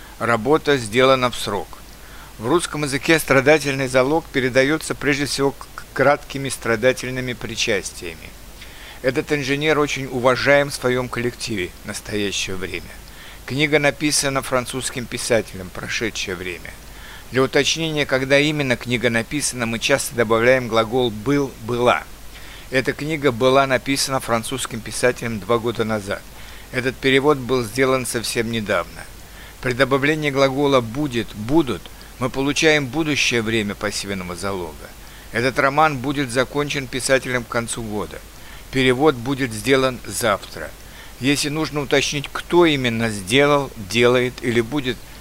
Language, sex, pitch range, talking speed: Russian, male, 120-145 Hz, 125 wpm